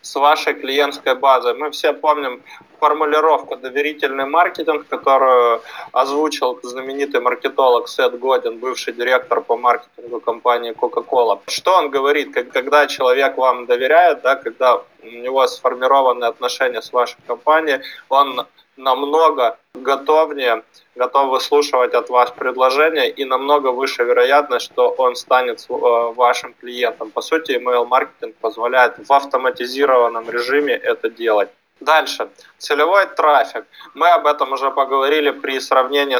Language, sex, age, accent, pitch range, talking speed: Russian, male, 20-39, native, 125-155 Hz, 125 wpm